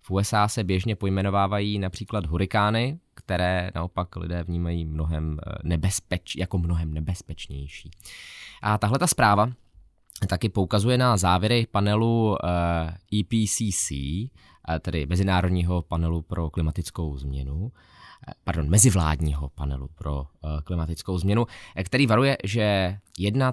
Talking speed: 105 wpm